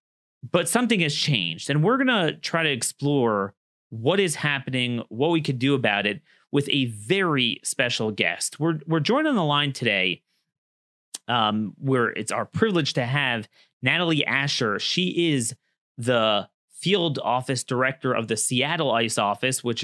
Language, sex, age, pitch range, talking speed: English, male, 30-49, 115-145 Hz, 160 wpm